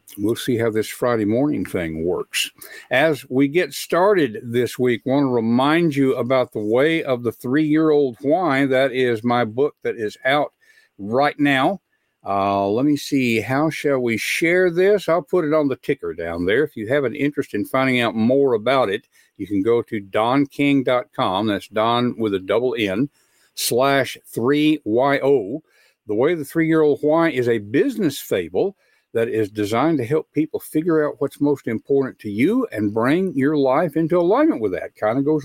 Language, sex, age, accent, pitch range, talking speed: English, male, 60-79, American, 120-160 Hz, 195 wpm